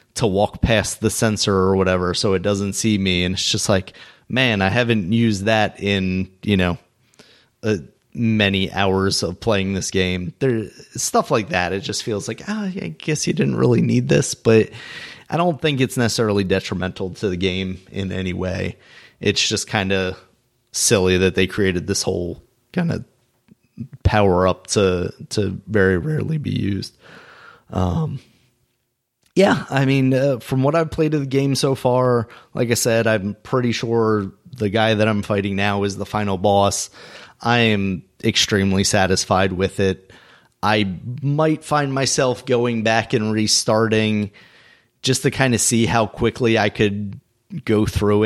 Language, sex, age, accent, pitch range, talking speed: English, male, 30-49, American, 95-120 Hz, 170 wpm